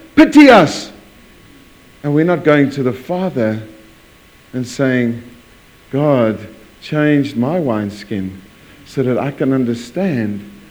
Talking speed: 110 wpm